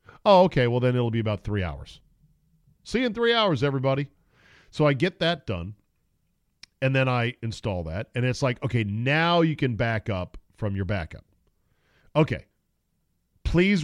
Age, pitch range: 40-59, 105-150 Hz